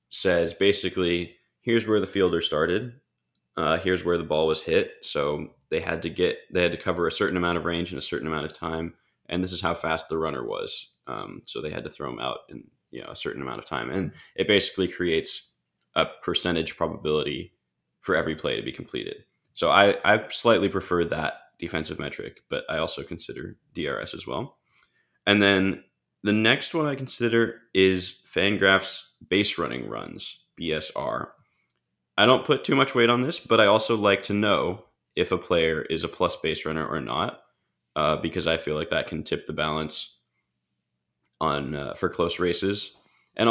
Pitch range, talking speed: 80-115 Hz, 190 wpm